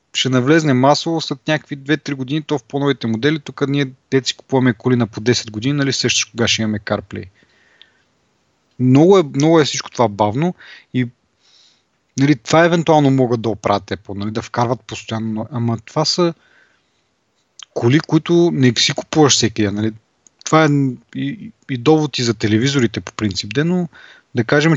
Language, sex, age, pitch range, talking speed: Bulgarian, male, 30-49, 115-150 Hz, 170 wpm